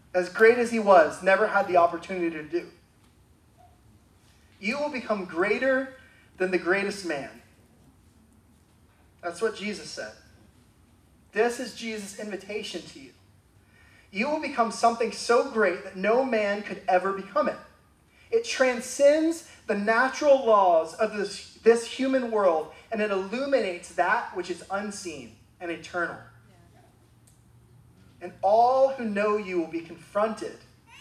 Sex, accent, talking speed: male, American, 135 wpm